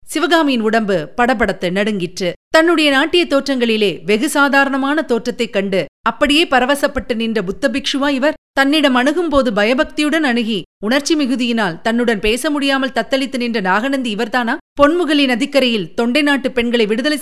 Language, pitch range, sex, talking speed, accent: Tamil, 220-270 Hz, female, 120 wpm, native